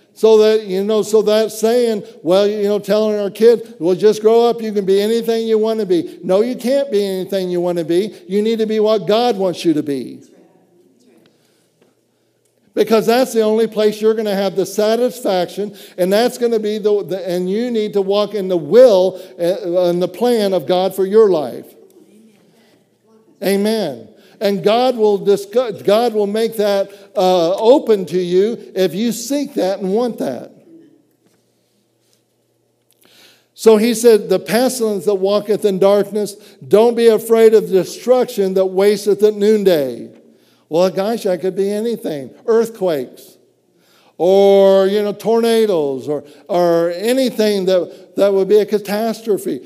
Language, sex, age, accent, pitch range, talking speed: English, male, 60-79, American, 190-225 Hz, 165 wpm